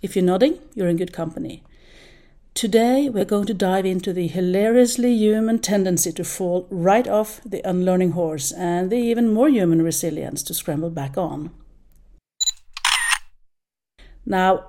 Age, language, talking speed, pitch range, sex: 60-79, English, 145 wpm, 175-230 Hz, female